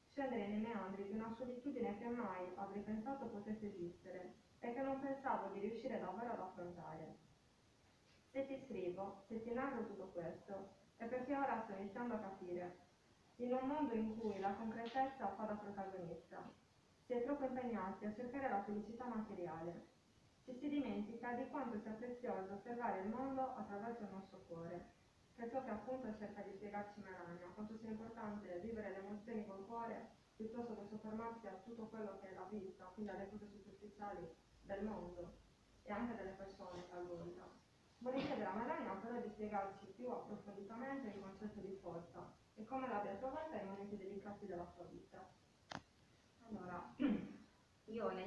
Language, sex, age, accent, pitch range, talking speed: Italian, female, 30-49, native, 195-240 Hz, 165 wpm